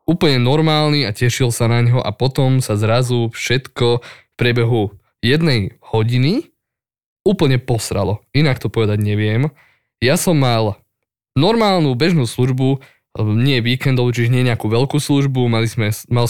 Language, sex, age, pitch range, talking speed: Slovak, male, 20-39, 110-130 Hz, 135 wpm